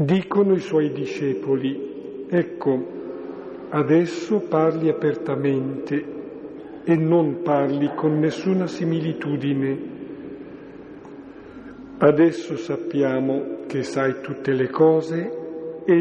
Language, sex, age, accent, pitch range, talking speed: Italian, male, 50-69, native, 145-175 Hz, 80 wpm